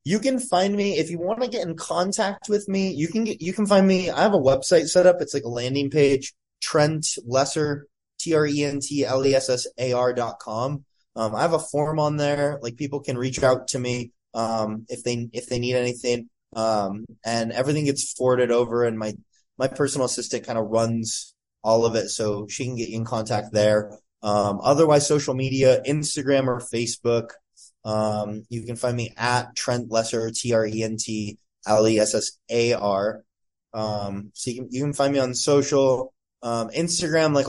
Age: 20-39